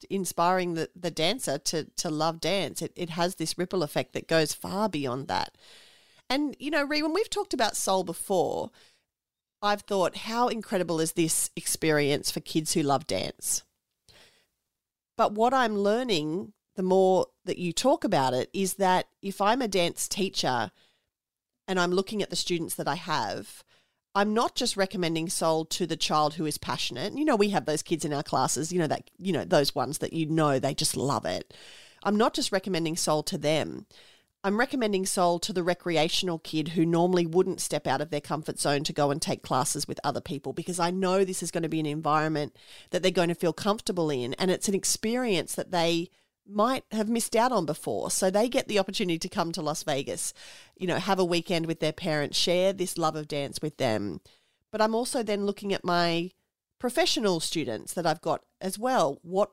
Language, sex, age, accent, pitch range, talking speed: English, female, 40-59, Australian, 160-200 Hz, 205 wpm